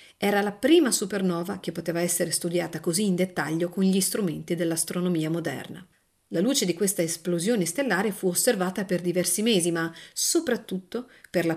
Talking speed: 160 wpm